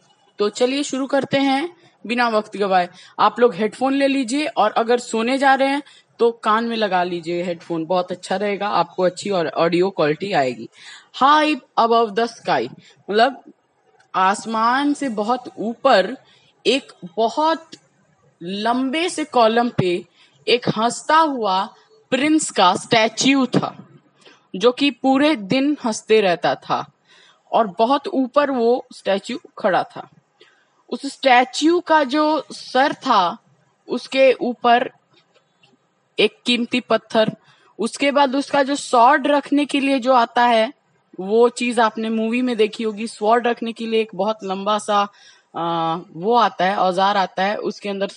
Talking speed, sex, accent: 145 wpm, female, native